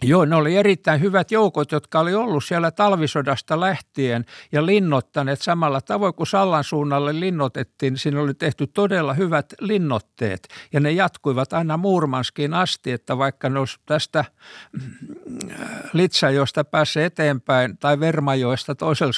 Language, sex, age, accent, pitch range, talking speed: Finnish, male, 60-79, native, 120-155 Hz, 140 wpm